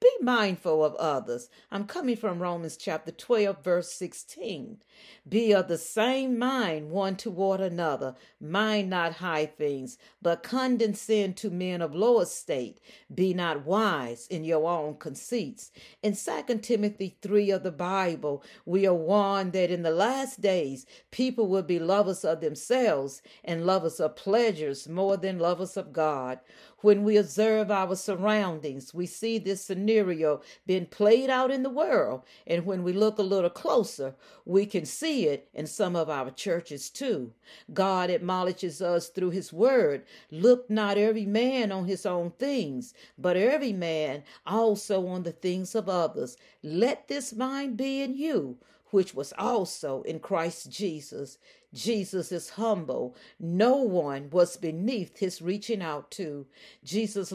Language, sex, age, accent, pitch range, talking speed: English, female, 40-59, American, 165-220 Hz, 155 wpm